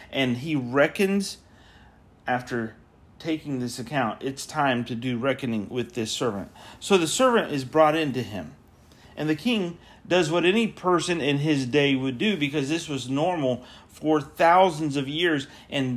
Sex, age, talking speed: male, 40-59, 165 wpm